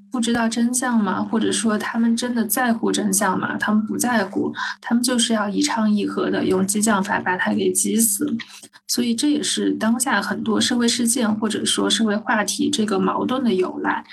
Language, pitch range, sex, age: Chinese, 200-235 Hz, female, 20-39